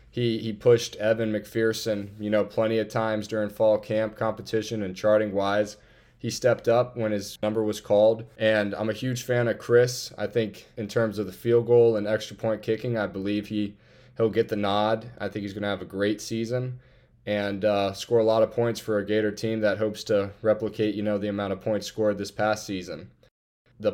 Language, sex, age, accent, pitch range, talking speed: English, male, 20-39, American, 105-115 Hz, 215 wpm